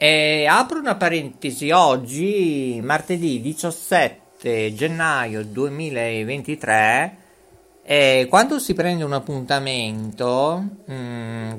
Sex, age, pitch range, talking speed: male, 50-69, 125-180 Hz, 85 wpm